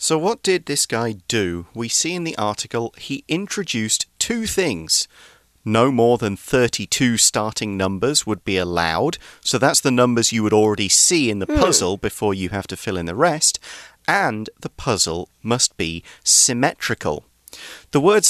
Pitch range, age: 105-135 Hz, 40-59